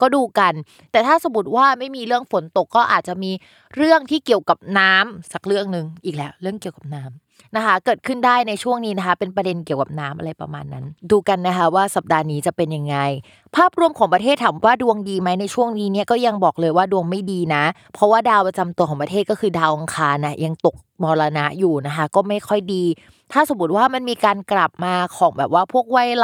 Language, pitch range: Thai, 175-235 Hz